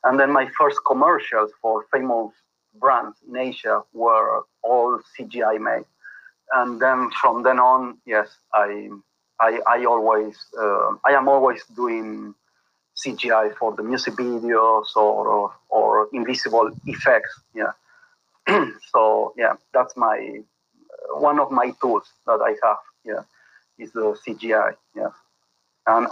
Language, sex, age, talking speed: English, male, 30-49, 130 wpm